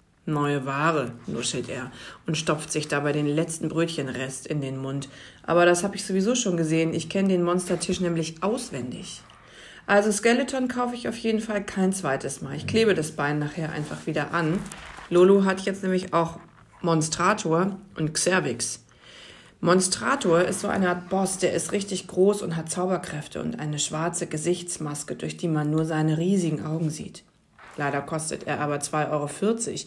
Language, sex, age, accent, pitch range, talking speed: German, female, 40-59, German, 155-195 Hz, 170 wpm